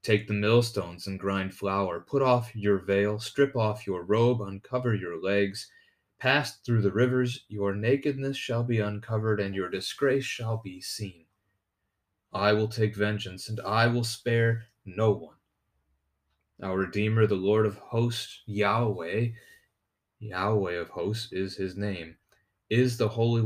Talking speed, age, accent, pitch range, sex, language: 150 wpm, 30-49, American, 95-115 Hz, male, English